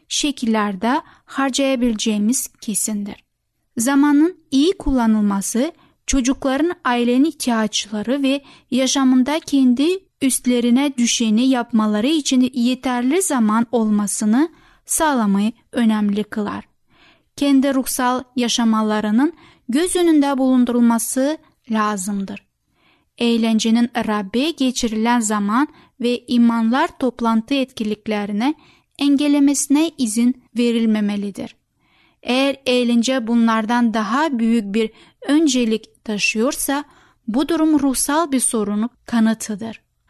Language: Turkish